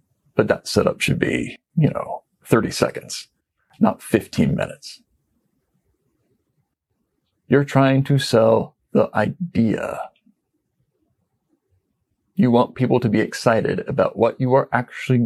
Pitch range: 115-155 Hz